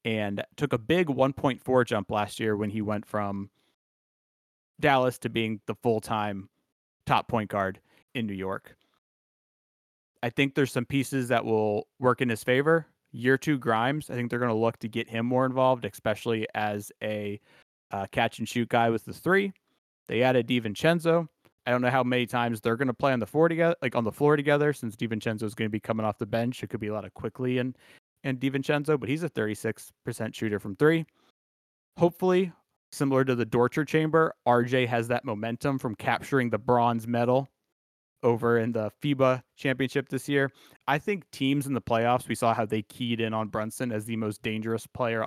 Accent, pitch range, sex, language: American, 110-135 Hz, male, English